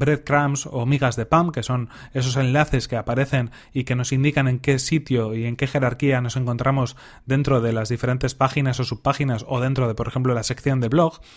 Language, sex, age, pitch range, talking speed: Spanish, male, 30-49, 125-145 Hz, 210 wpm